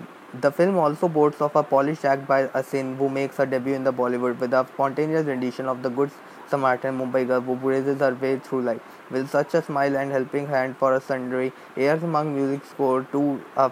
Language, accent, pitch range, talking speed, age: English, Indian, 130-140 Hz, 215 wpm, 20-39